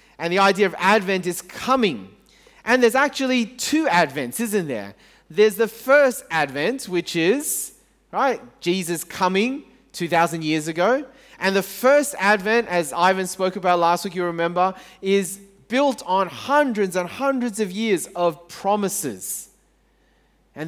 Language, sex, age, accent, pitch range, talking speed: English, male, 30-49, Australian, 170-225 Hz, 140 wpm